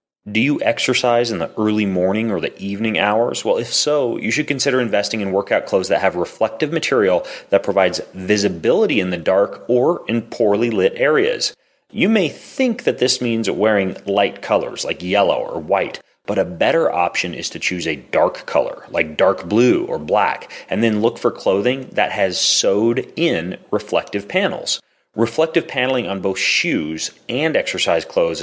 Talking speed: 175 wpm